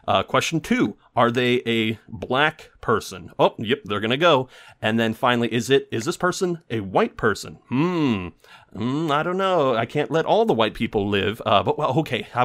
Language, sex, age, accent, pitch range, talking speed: English, male, 30-49, American, 105-145 Hz, 200 wpm